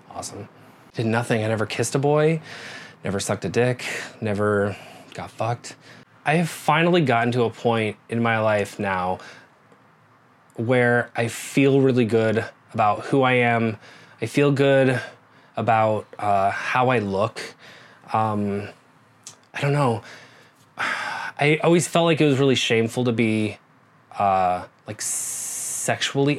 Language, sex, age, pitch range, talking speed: English, male, 20-39, 110-130 Hz, 135 wpm